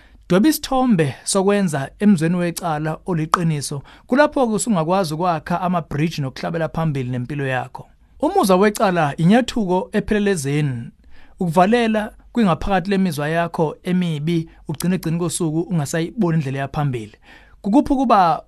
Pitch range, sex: 155-205 Hz, male